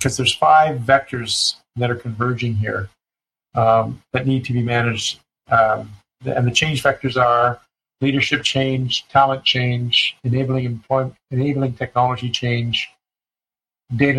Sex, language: male, English